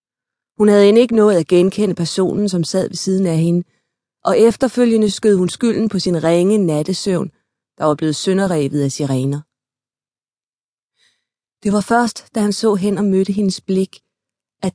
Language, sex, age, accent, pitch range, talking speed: Danish, female, 30-49, native, 165-205 Hz, 165 wpm